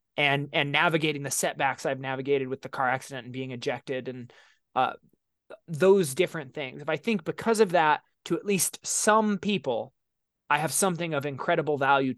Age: 20-39